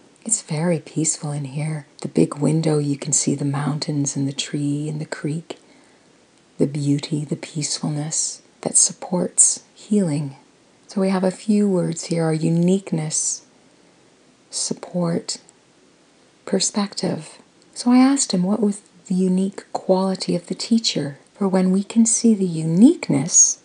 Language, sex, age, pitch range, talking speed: English, female, 40-59, 155-200 Hz, 140 wpm